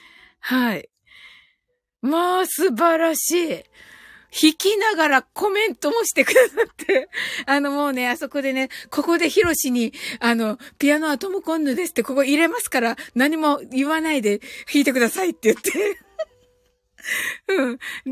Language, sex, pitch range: Japanese, female, 235-350 Hz